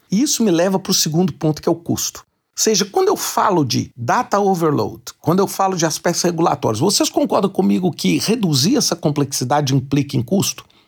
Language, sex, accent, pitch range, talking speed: Portuguese, male, Brazilian, 130-195 Hz, 200 wpm